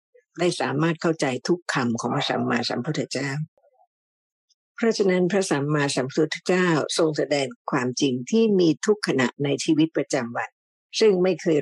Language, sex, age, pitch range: Thai, female, 60-79, 140-190 Hz